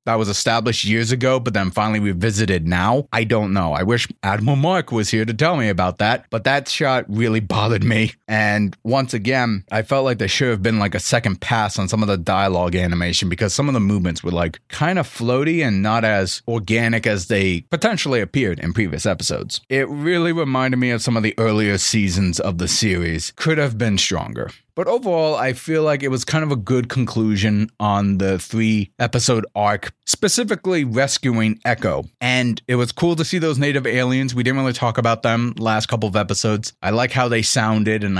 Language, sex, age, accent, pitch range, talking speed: English, male, 30-49, American, 105-130 Hz, 210 wpm